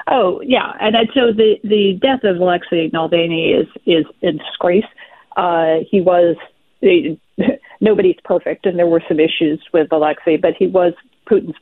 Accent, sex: American, female